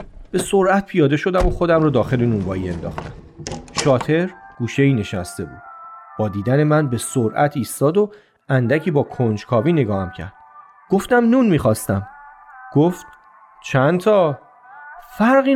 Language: Persian